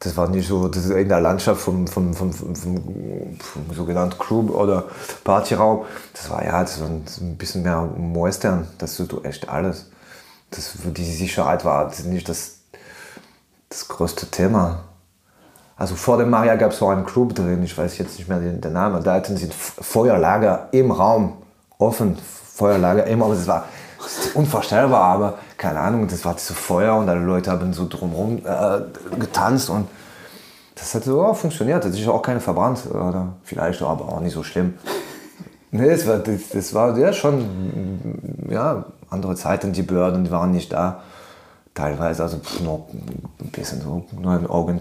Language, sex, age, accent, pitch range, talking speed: German, male, 30-49, German, 85-95 Hz, 175 wpm